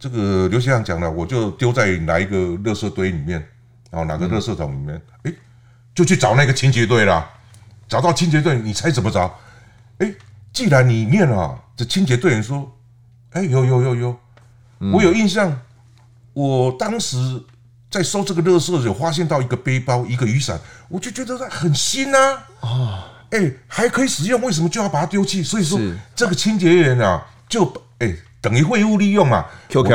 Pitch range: 110-170 Hz